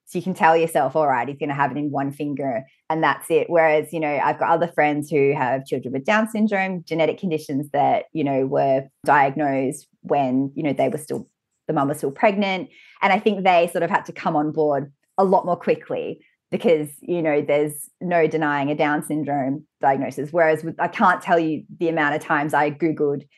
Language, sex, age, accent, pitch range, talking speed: English, female, 20-39, Australian, 155-200 Hz, 220 wpm